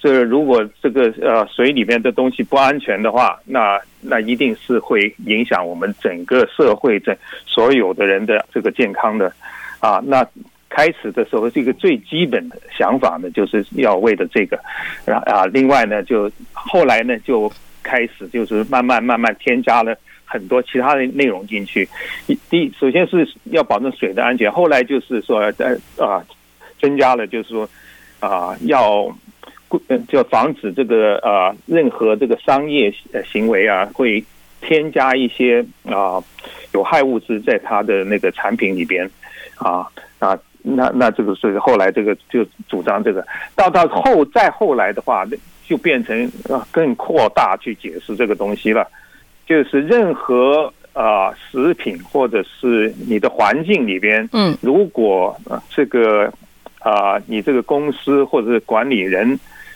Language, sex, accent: English, male, Chinese